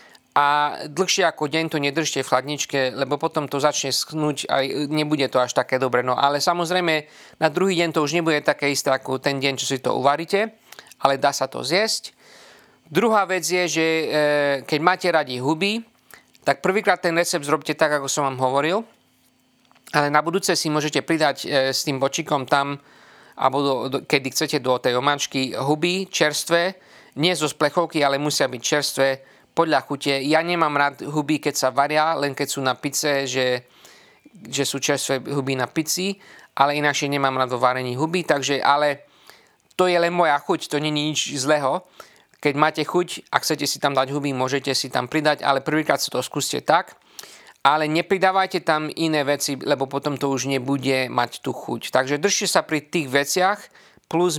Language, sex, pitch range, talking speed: Slovak, male, 140-165 Hz, 180 wpm